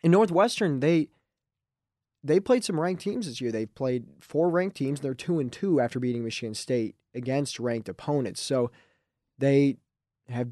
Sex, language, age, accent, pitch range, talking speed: male, English, 20-39, American, 115-140 Hz, 165 wpm